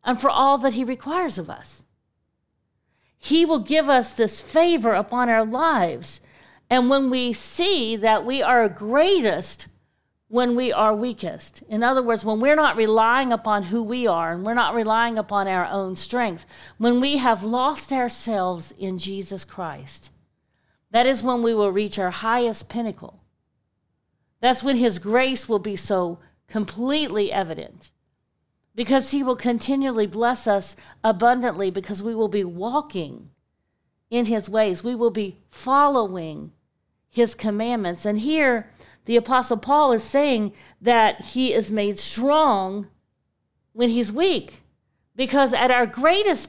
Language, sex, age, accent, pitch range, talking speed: English, female, 50-69, American, 215-275 Hz, 145 wpm